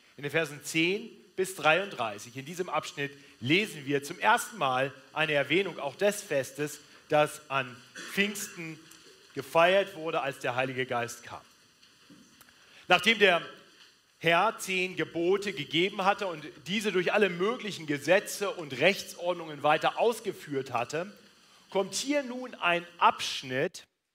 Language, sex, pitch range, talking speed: German, male, 150-200 Hz, 130 wpm